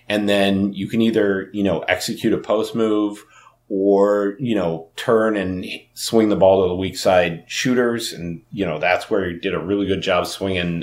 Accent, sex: American, male